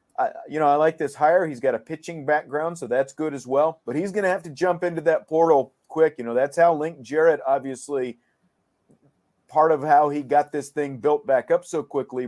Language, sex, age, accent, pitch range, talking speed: English, male, 40-59, American, 130-170 Hz, 230 wpm